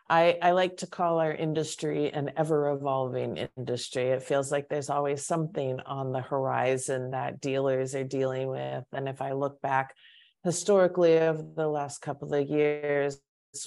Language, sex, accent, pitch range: English, female, American, 135-160 Hz